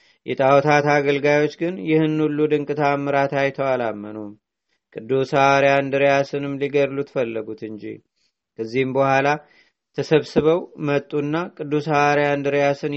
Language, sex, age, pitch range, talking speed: Amharic, male, 30-49, 135-145 Hz, 95 wpm